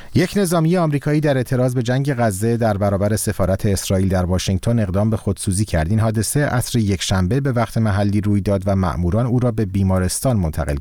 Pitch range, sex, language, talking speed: 95-120 Hz, male, Persian, 195 wpm